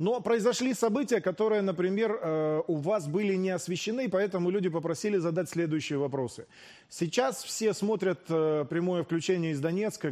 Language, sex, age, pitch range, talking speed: Russian, male, 30-49, 140-190 Hz, 135 wpm